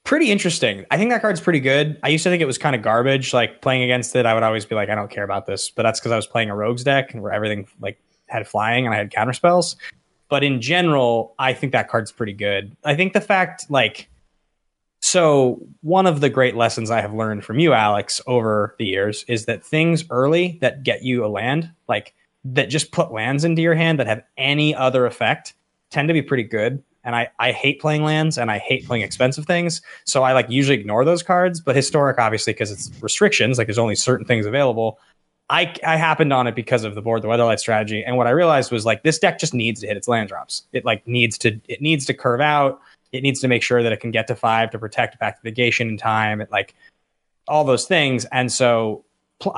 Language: English